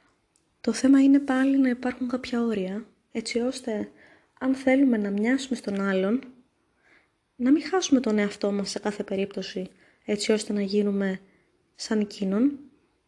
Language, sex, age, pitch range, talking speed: Greek, female, 20-39, 205-255 Hz, 140 wpm